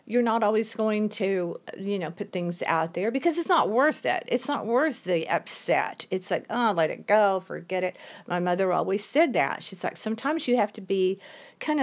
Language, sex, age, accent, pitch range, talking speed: English, female, 50-69, American, 180-240 Hz, 215 wpm